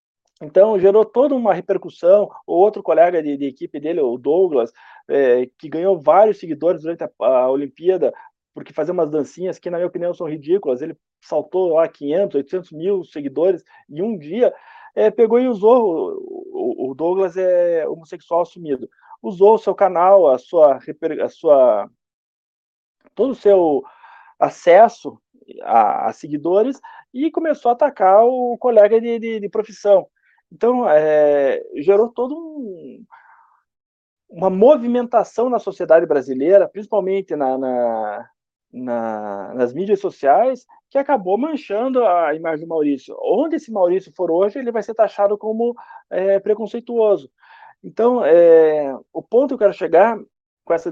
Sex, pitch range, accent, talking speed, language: male, 165-250 Hz, Brazilian, 140 wpm, Portuguese